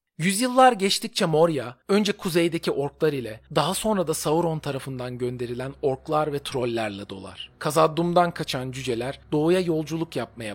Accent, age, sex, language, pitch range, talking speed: native, 40-59, male, Turkish, 125-180 Hz, 130 wpm